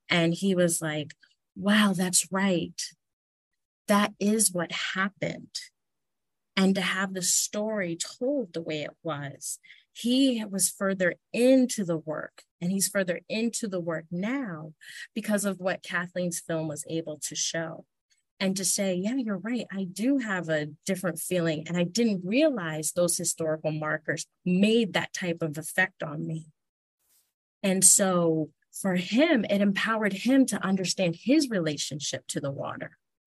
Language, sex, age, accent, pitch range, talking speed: English, female, 30-49, American, 165-210 Hz, 150 wpm